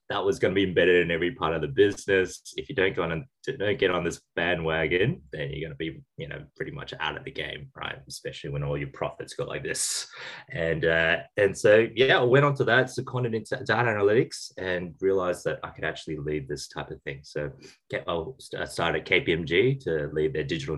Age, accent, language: 20-39, Australian, English